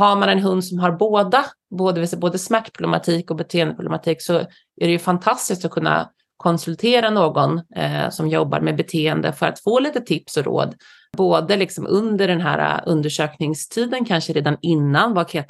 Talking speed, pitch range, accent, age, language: 175 wpm, 165-205 Hz, native, 30-49, Swedish